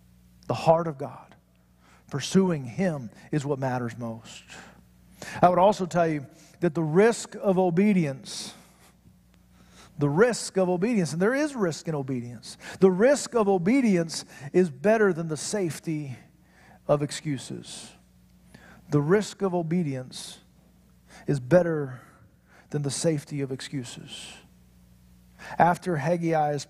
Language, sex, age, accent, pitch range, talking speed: English, male, 50-69, American, 130-200 Hz, 120 wpm